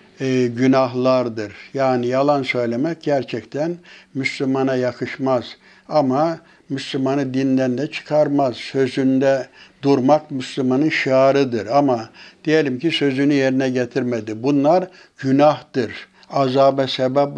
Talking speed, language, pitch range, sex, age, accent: 90 wpm, Turkish, 130-155 Hz, male, 60-79, native